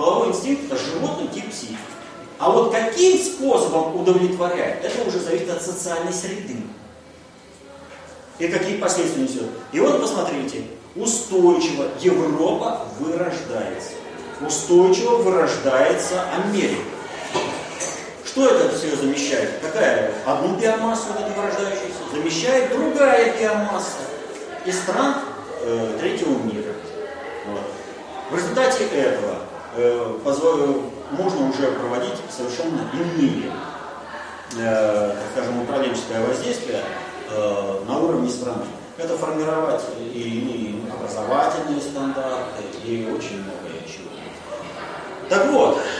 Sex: male